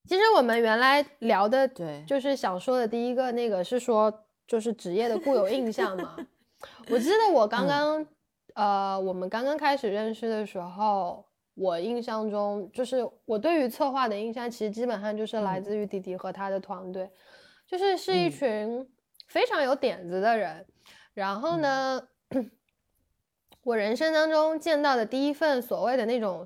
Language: Chinese